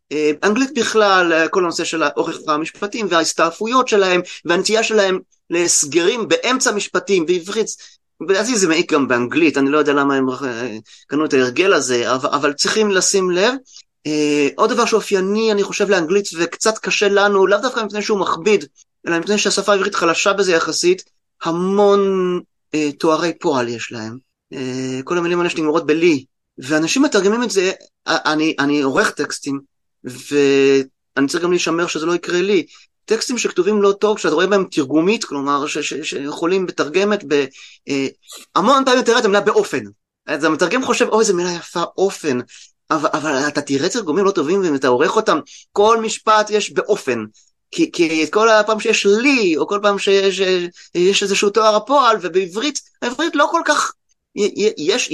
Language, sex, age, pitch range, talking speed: Hebrew, male, 30-49, 150-215 Hz, 145 wpm